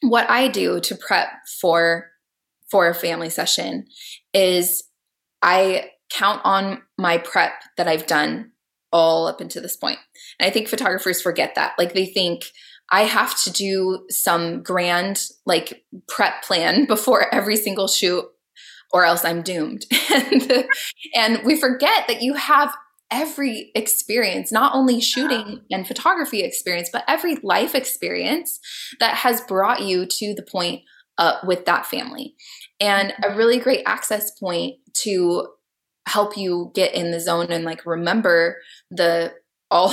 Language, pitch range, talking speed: English, 175-245 Hz, 145 wpm